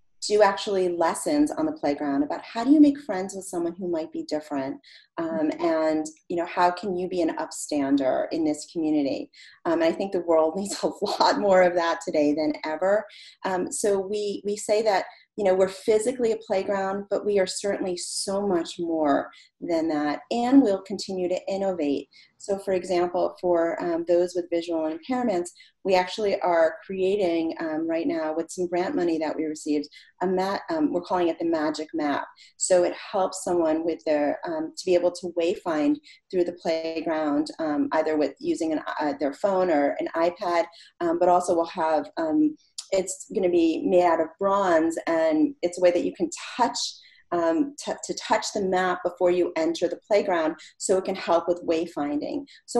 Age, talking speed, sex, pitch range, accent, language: 30-49, 185 wpm, female, 170-245 Hz, American, English